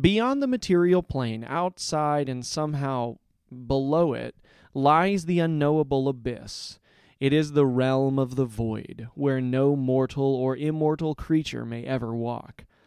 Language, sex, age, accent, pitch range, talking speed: English, male, 30-49, American, 125-150 Hz, 135 wpm